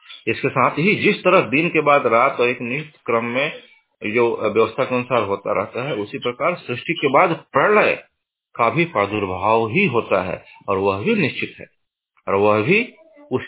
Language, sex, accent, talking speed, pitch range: Hindi, male, native, 185 wpm, 100-155 Hz